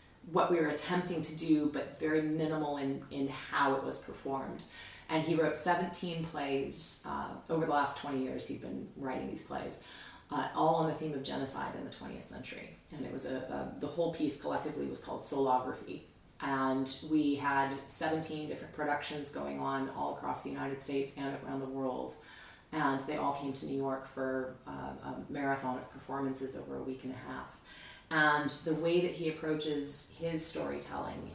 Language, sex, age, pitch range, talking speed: English, female, 30-49, 135-170 Hz, 190 wpm